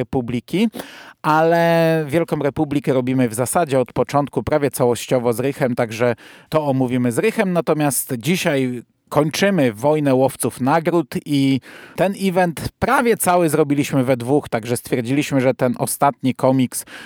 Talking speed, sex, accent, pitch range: 135 wpm, male, native, 130-165 Hz